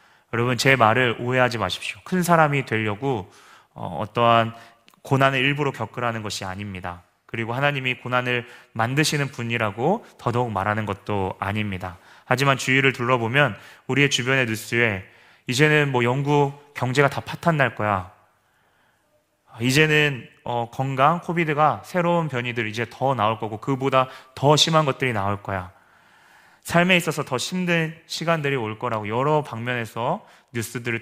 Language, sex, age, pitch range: Korean, male, 30-49, 110-140 Hz